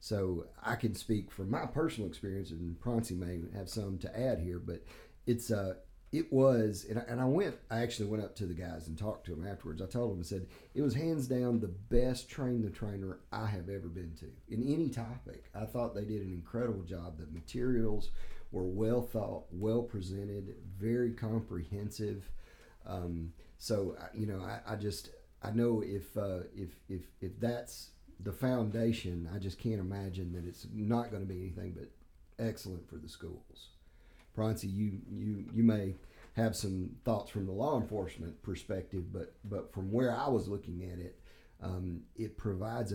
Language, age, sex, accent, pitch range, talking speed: English, 40-59, male, American, 90-115 Hz, 190 wpm